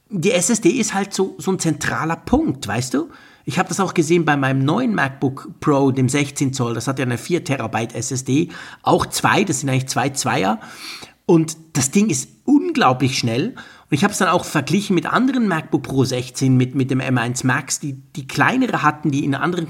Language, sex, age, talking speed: German, male, 50-69, 205 wpm